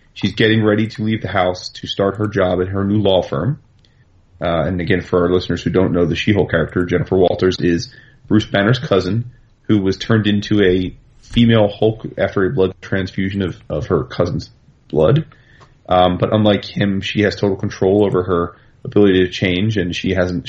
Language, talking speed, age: English, 195 wpm, 30-49